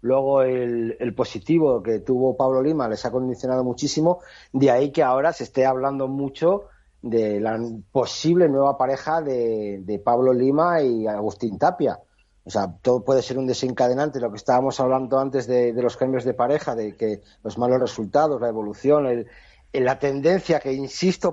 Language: Spanish